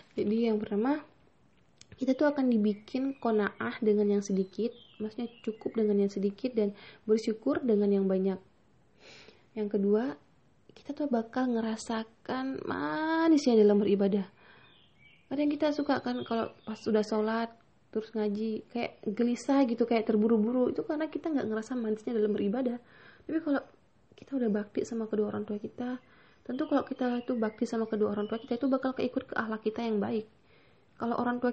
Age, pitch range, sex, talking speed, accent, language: 20-39, 210-250 Hz, female, 160 wpm, native, Indonesian